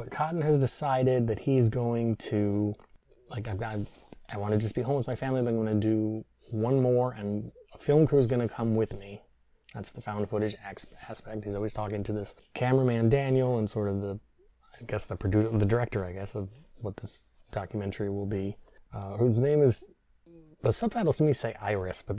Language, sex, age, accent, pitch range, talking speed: English, male, 20-39, American, 105-125 Hz, 215 wpm